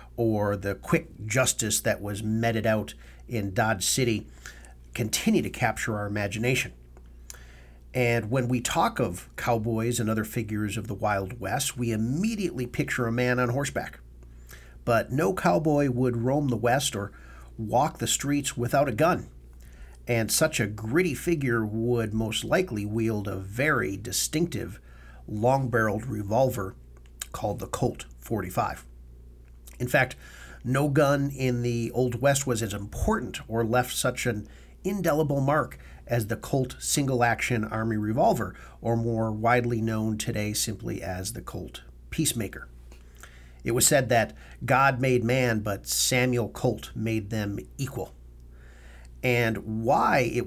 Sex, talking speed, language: male, 140 wpm, English